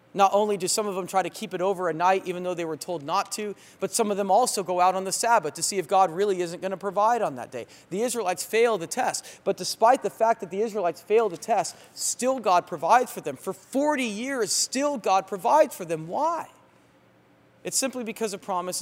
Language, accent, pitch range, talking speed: English, American, 175-235 Hz, 240 wpm